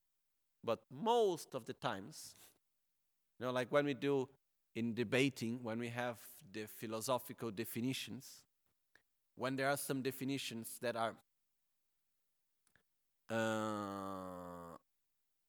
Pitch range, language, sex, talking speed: 115-165 Hz, Italian, male, 105 wpm